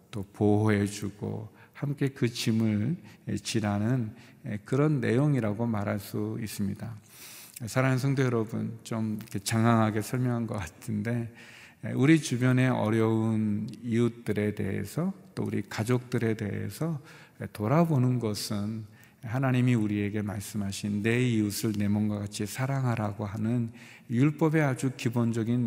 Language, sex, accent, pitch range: Korean, male, native, 105-130 Hz